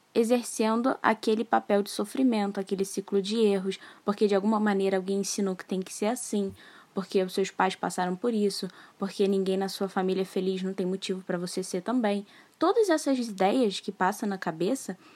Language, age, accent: Portuguese, 10-29, Brazilian